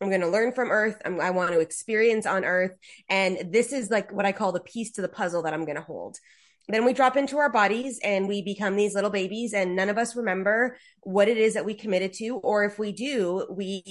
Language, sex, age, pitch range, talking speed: English, female, 20-39, 190-235 Hz, 240 wpm